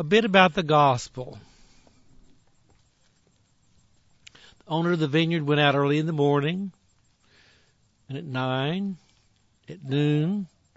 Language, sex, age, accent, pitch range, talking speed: English, male, 60-79, American, 130-180 Hz, 115 wpm